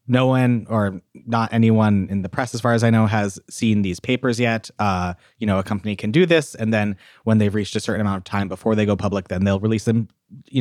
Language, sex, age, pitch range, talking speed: English, male, 30-49, 100-130 Hz, 255 wpm